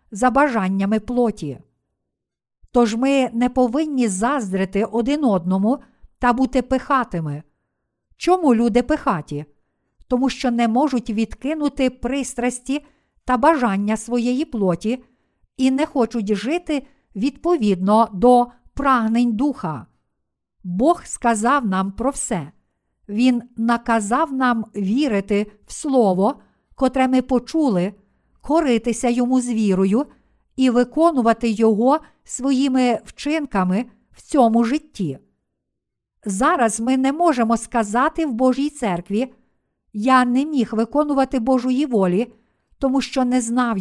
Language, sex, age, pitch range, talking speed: Ukrainian, female, 50-69, 220-270 Hz, 105 wpm